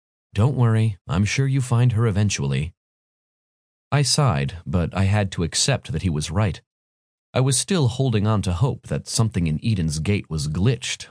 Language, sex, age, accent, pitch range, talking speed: English, male, 30-49, American, 85-125 Hz, 180 wpm